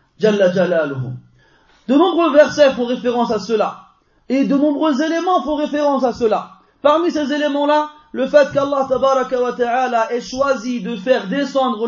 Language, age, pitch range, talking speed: French, 30-49, 215-290 Hz, 135 wpm